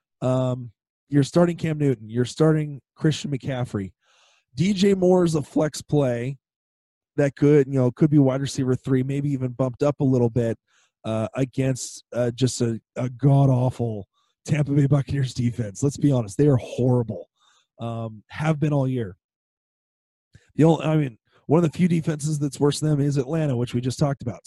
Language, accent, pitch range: English, American, 120-145 Hz